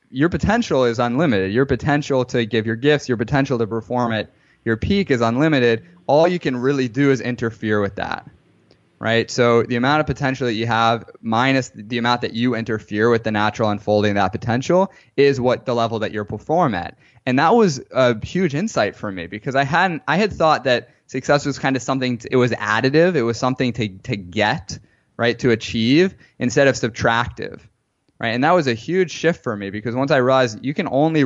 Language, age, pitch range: English, 20-39, 110-135 Hz